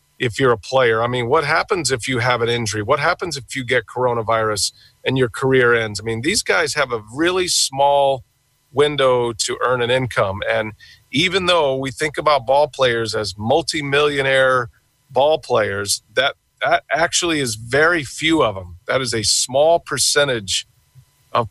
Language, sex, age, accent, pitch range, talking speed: English, male, 40-59, American, 115-140 Hz, 175 wpm